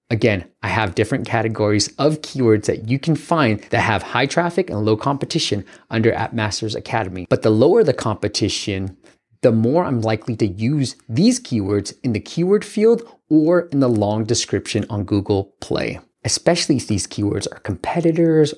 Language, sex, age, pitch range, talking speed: English, male, 30-49, 100-130 Hz, 170 wpm